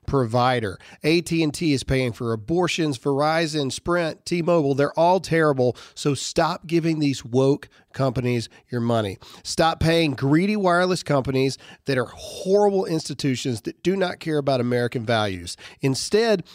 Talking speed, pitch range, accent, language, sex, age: 135 wpm, 125-170 Hz, American, English, male, 40-59